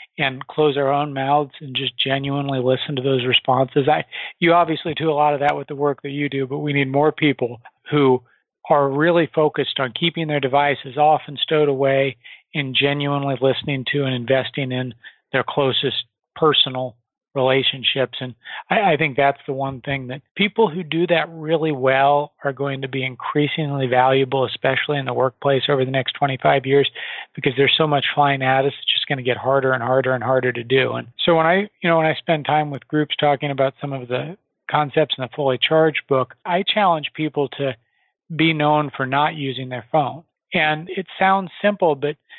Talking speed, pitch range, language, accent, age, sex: 200 wpm, 135-155 Hz, English, American, 40-59, male